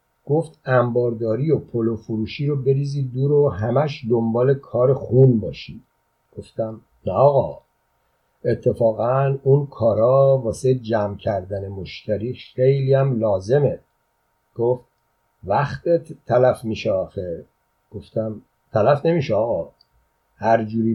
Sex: male